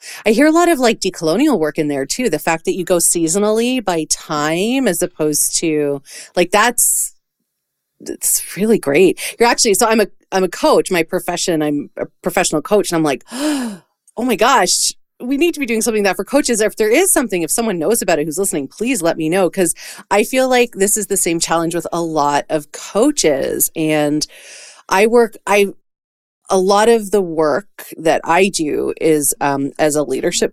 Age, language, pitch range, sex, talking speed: 30-49, English, 160-225 Hz, female, 200 wpm